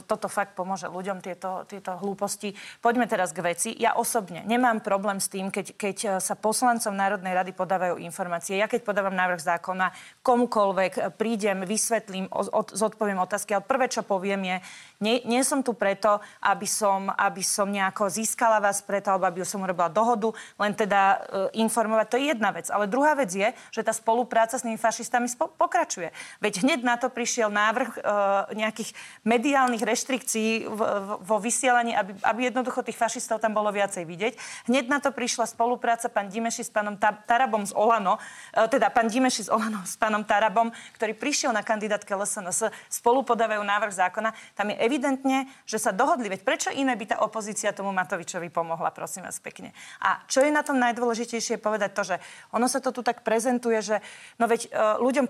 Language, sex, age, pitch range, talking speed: Slovak, female, 30-49, 200-235 Hz, 185 wpm